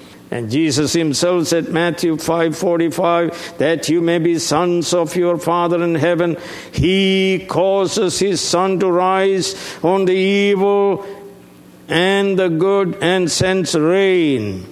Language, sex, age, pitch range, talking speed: English, male, 60-79, 155-230 Hz, 135 wpm